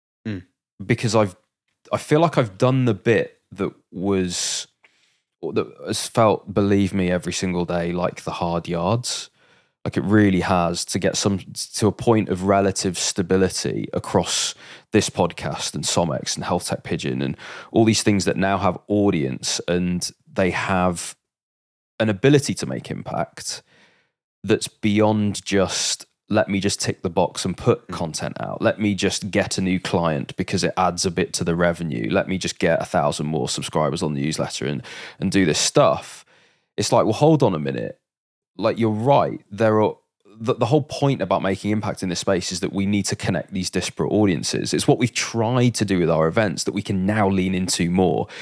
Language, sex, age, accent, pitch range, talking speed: English, male, 20-39, British, 90-110 Hz, 190 wpm